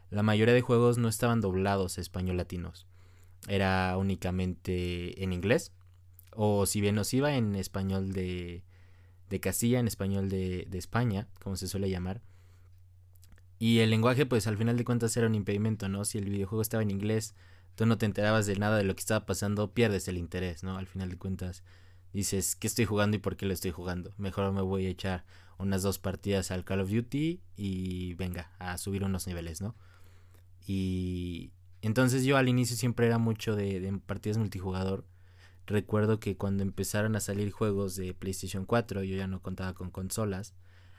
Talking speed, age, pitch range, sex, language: 185 wpm, 20-39, 90-105 Hz, male, Spanish